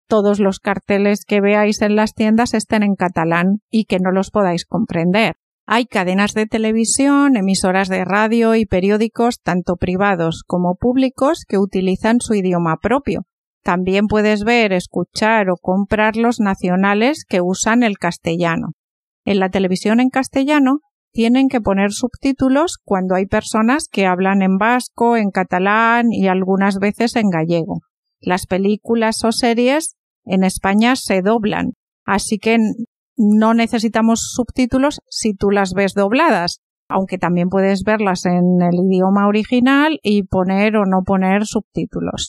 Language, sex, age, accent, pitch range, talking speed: Spanish, female, 50-69, Spanish, 190-240 Hz, 145 wpm